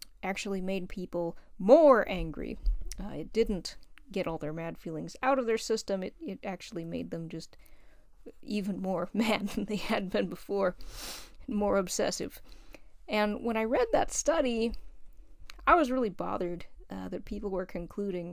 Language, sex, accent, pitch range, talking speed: English, female, American, 190-250 Hz, 160 wpm